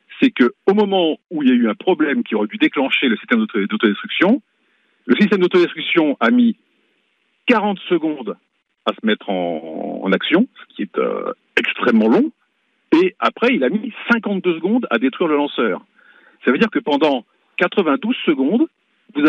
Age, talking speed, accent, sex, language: 50-69, 175 wpm, French, male, French